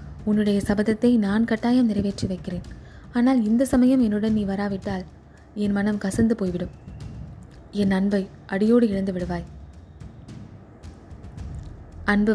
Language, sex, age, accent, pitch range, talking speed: Tamil, female, 20-39, native, 180-225 Hz, 105 wpm